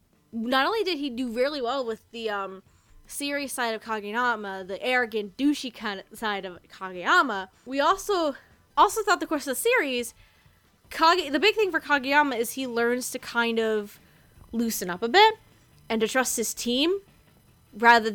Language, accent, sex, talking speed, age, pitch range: English, American, female, 175 wpm, 10-29, 210-285 Hz